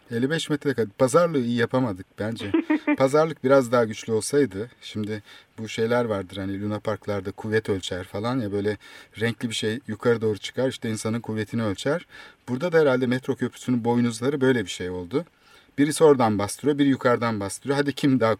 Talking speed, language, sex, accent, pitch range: 175 wpm, Turkish, male, native, 100-125 Hz